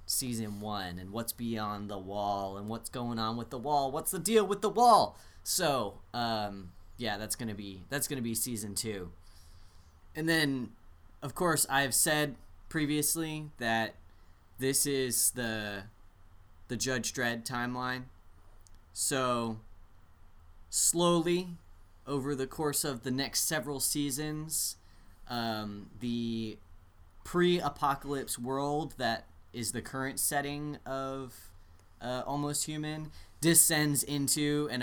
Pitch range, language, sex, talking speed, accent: 95-140 Hz, English, male, 125 wpm, American